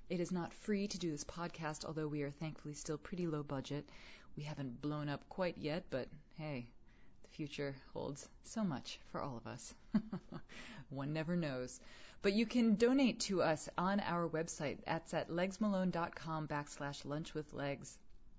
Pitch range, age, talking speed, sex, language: 145-175 Hz, 30-49, 165 wpm, female, English